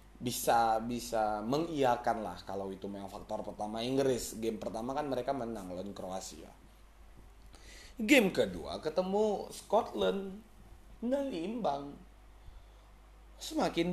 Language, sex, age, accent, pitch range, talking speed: Indonesian, male, 20-39, native, 105-155 Hz, 100 wpm